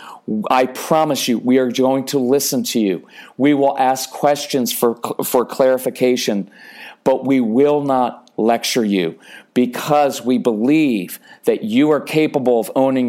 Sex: male